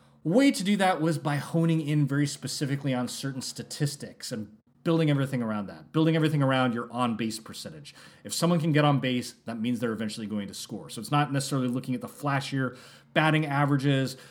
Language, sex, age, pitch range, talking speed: English, male, 30-49, 125-160 Hz, 195 wpm